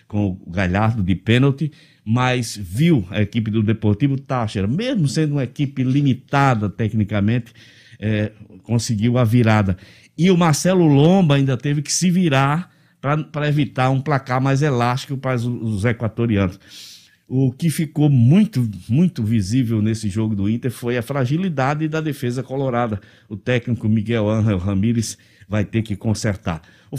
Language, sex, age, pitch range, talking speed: Portuguese, male, 60-79, 110-140 Hz, 150 wpm